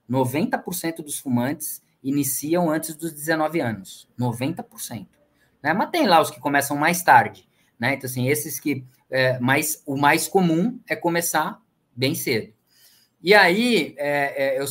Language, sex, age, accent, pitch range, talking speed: Portuguese, male, 20-39, Brazilian, 135-175 Hz, 135 wpm